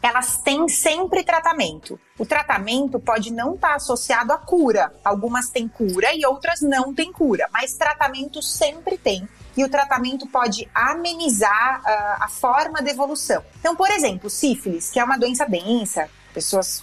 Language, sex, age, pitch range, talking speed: Portuguese, female, 30-49, 220-310 Hz, 155 wpm